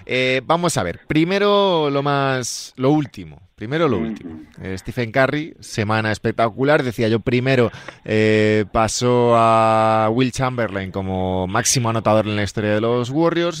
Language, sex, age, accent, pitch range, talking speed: Spanish, male, 20-39, Spanish, 95-125 Hz, 150 wpm